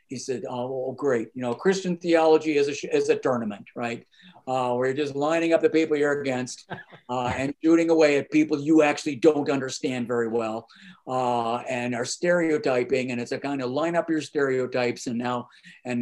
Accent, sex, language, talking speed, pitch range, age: American, male, English, 195 wpm, 125-170 Hz, 50-69